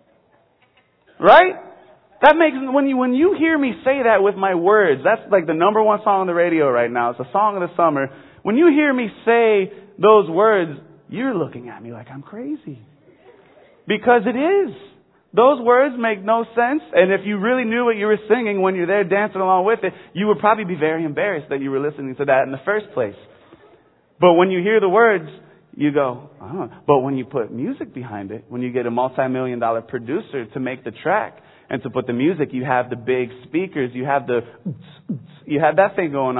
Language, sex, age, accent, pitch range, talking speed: English, male, 30-49, American, 135-220 Hz, 215 wpm